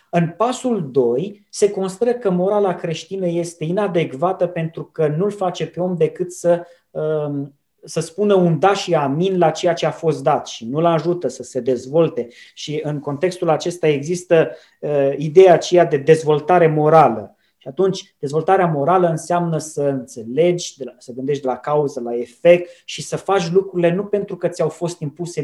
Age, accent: 20-39, native